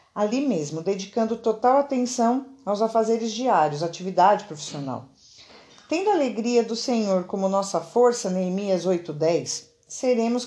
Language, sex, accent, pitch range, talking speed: Portuguese, female, Brazilian, 185-235 Hz, 120 wpm